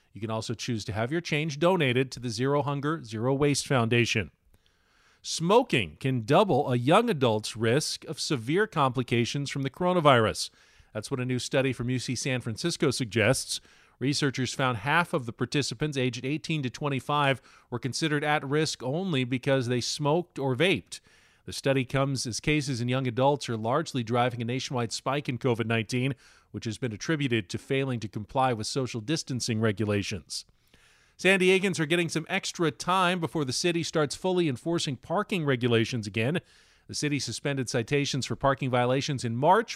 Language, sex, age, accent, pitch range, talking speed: English, male, 40-59, American, 120-150 Hz, 170 wpm